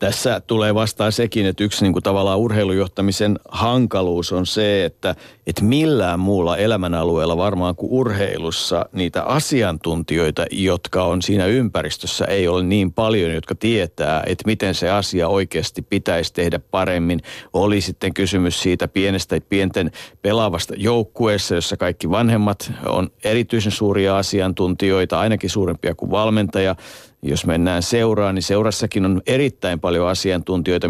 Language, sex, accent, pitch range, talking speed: Finnish, male, native, 90-105 Hz, 135 wpm